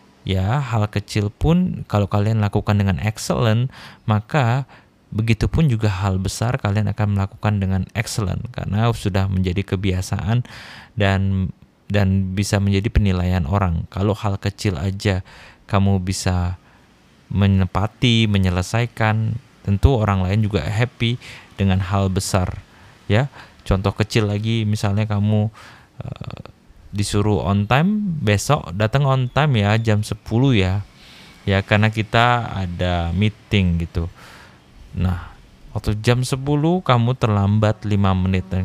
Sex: male